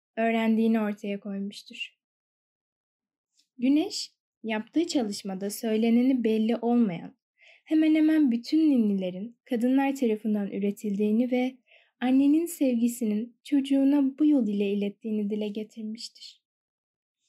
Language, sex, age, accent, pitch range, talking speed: Turkish, female, 10-29, native, 220-280 Hz, 90 wpm